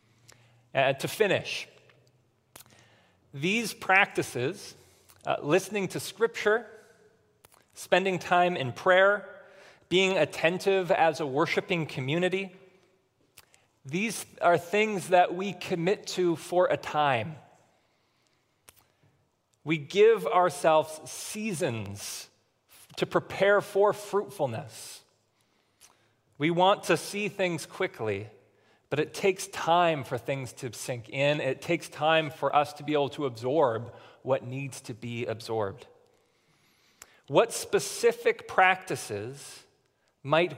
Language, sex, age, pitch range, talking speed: English, male, 30-49, 135-190 Hz, 105 wpm